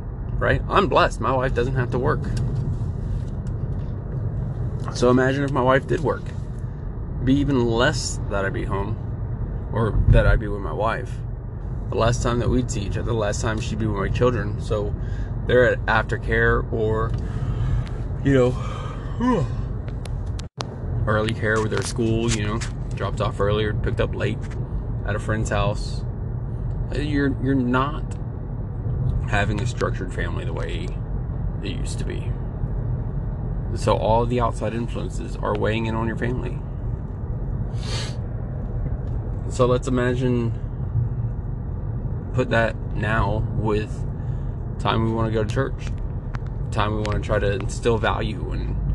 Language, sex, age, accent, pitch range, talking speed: English, male, 20-39, American, 110-125 Hz, 145 wpm